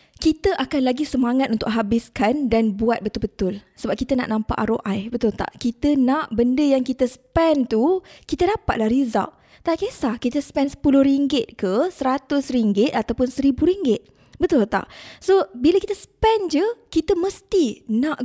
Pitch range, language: 230-300 Hz, Malay